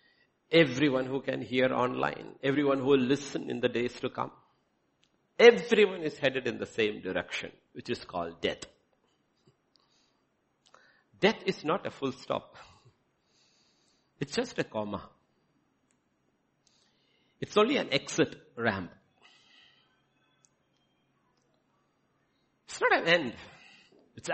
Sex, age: male, 60-79